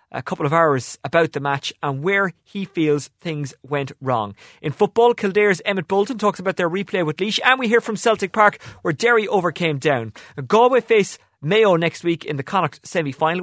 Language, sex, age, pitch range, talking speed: English, male, 30-49, 150-210 Hz, 195 wpm